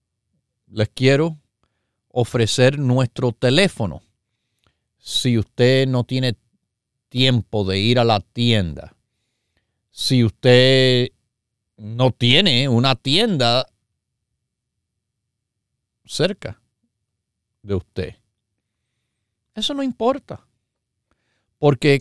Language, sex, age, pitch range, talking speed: Spanish, male, 50-69, 105-130 Hz, 75 wpm